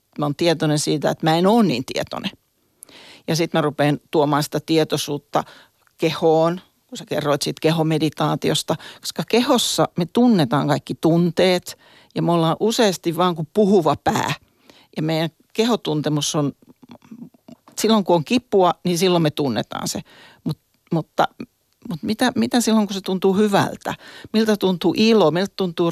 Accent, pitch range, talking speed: native, 155-205 Hz, 150 wpm